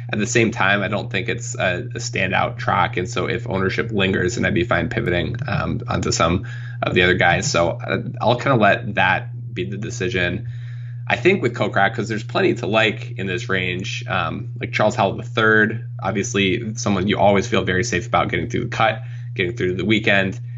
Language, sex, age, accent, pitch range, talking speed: English, male, 20-39, American, 95-120 Hz, 205 wpm